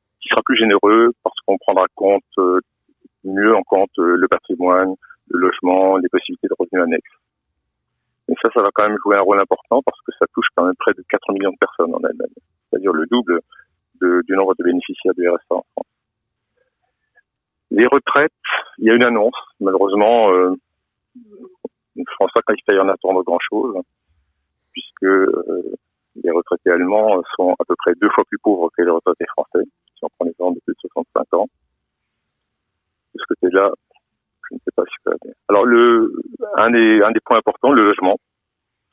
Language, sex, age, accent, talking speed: French, male, 50-69, French, 180 wpm